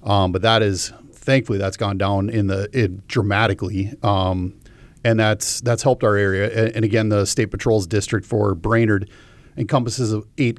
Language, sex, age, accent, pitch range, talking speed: English, male, 40-59, American, 100-115 Hz, 170 wpm